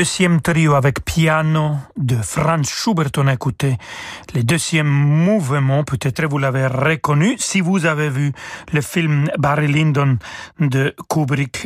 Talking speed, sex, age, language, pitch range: 145 wpm, male, 40-59, French, 135-165 Hz